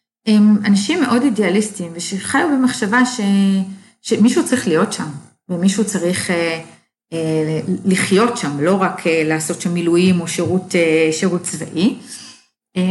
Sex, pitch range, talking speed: female, 170-225 Hz, 135 wpm